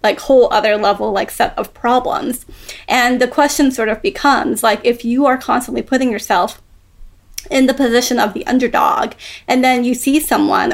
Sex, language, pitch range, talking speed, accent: female, English, 235-270 Hz, 180 wpm, American